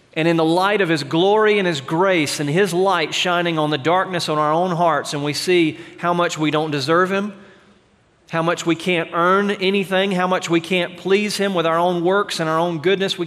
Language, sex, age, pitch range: English, male, 40-59, 135-175 Hz